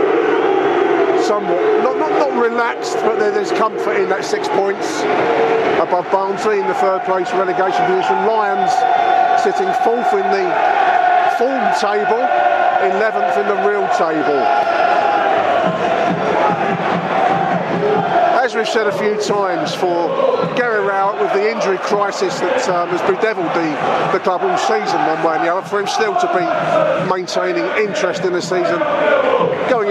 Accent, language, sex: British, English, male